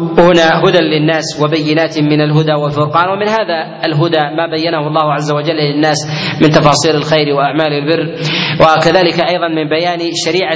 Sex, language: male, Arabic